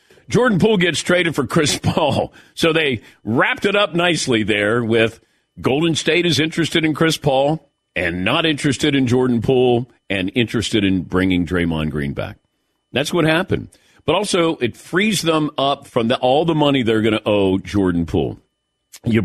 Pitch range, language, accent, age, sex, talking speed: 115-165 Hz, English, American, 50-69, male, 170 wpm